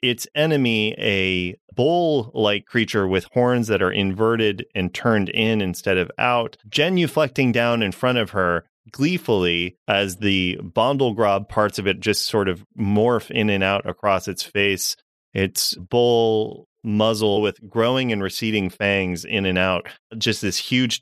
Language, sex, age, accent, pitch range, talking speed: English, male, 30-49, American, 95-120 Hz, 150 wpm